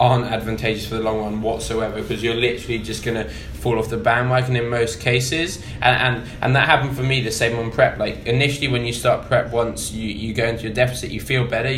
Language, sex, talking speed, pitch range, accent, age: English, male, 235 wpm, 110-120 Hz, British, 10-29